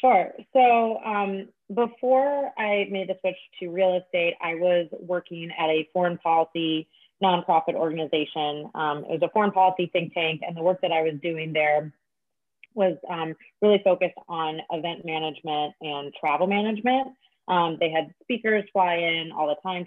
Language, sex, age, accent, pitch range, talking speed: English, female, 30-49, American, 160-190 Hz, 165 wpm